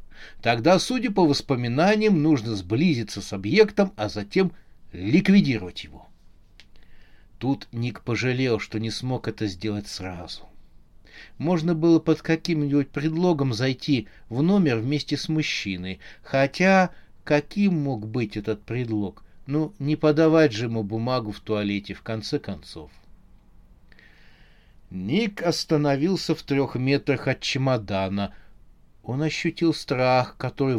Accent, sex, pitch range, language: native, male, 105-150 Hz, Russian